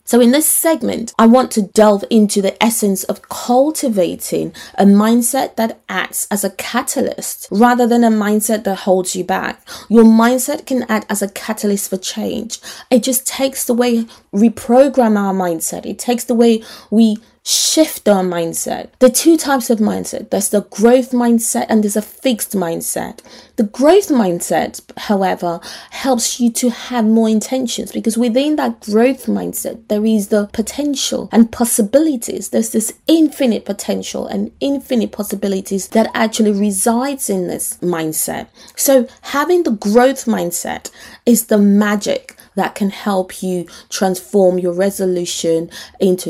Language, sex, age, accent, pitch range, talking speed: English, female, 20-39, British, 205-255 Hz, 155 wpm